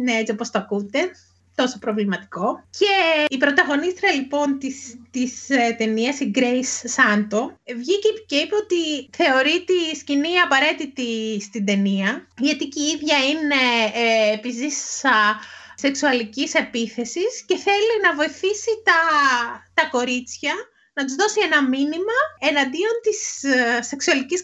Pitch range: 245-350 Hz